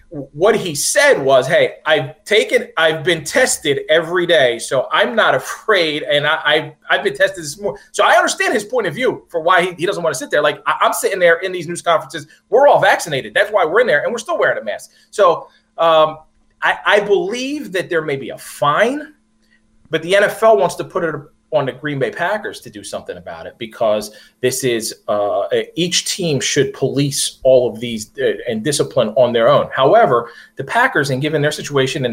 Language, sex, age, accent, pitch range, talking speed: English, male, 30-49, American, 140-200 Hz, 215 wpm